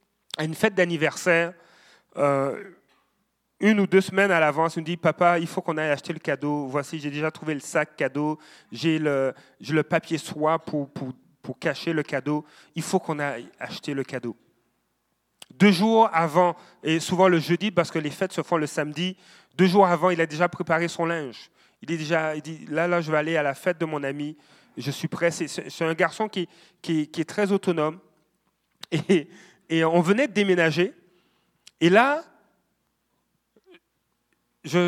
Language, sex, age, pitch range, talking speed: French, male, 30-49, 150-180 Hz, 190 wpm